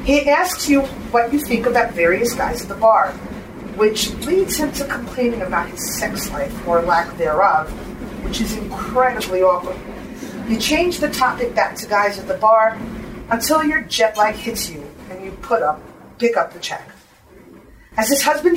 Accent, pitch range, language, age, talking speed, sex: American, 195-275 Hz, English, 40-59, 180 wpm, female